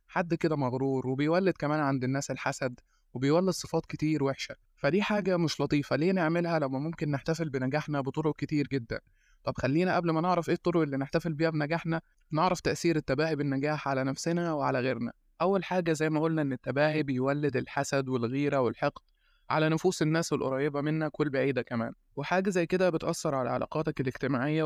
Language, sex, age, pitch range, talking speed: Arabic, male, 20-39, 140-165 Hz, 170 wpm